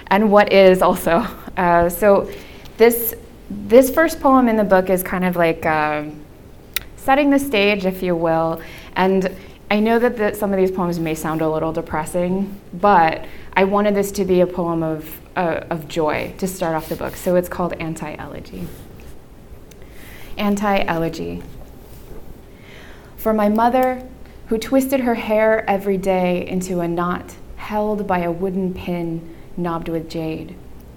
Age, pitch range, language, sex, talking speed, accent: 20-39, 170-210 Hz, English, female, 155 wpm, American